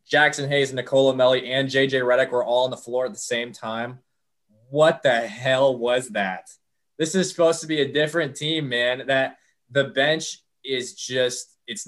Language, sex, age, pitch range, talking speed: English, male, 20-39, 120-140 Hz, 180 wpm